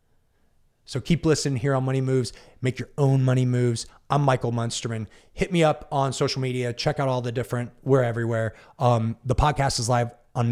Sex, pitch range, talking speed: male, 110-135 Hz, 195 wpm